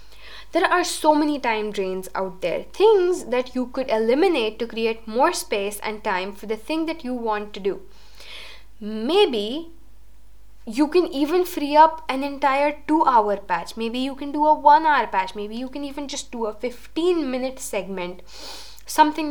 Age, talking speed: 10-29, 175 wpm